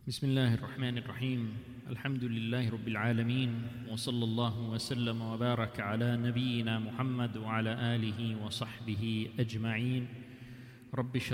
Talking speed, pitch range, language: 115 wpm, 120-145 Hz, English